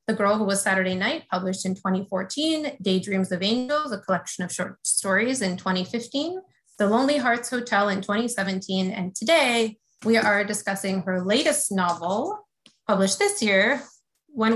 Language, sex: English, female